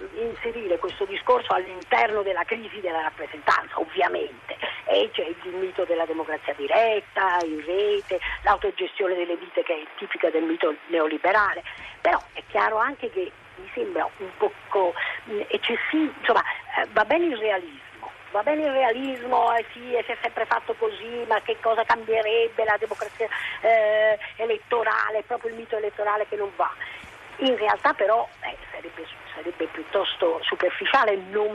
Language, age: Italian, 40-59